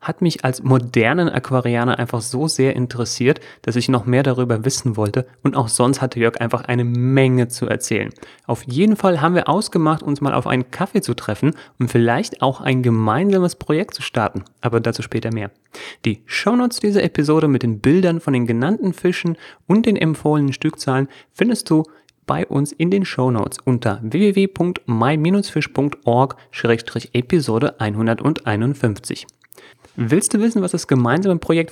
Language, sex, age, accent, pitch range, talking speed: German, male, 30-49, German, 120-165 Hz, 155 wpm